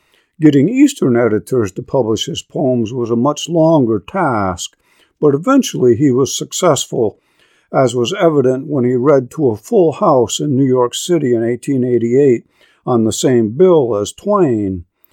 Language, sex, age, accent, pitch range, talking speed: English, male, 50-69, American, 110-155 Hz, 155 wpm